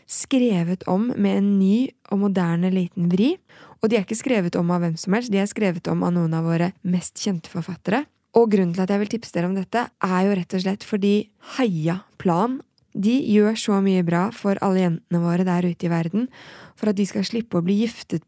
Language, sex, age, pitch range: English, female, 20-39, 180-220 Hz